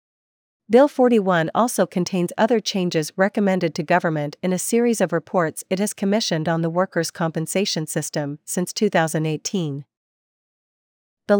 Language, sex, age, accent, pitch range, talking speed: English, female, 40-59, American, 160-200 Hz, 130 wpm